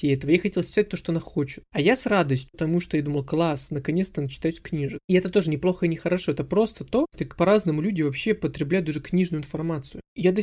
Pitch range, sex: 155-185 Hz, male